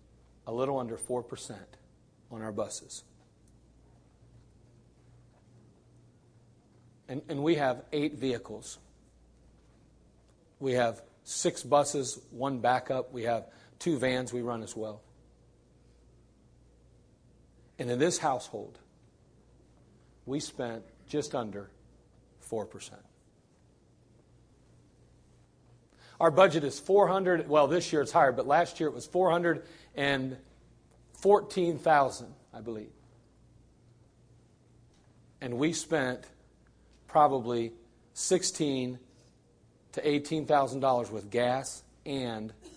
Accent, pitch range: American, 110-150 Hz